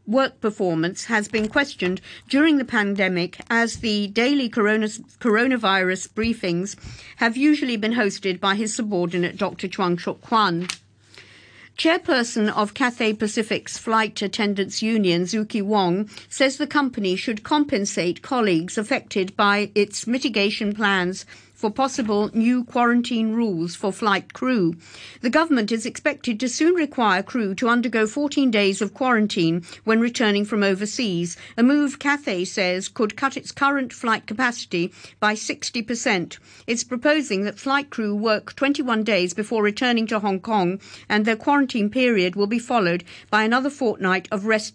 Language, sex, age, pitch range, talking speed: English, female, 50-69, 195-245 Hz, 140 wpm